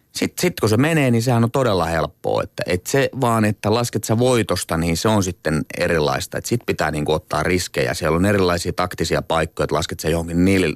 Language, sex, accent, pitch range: Finnish, male, native, 85-120 Hz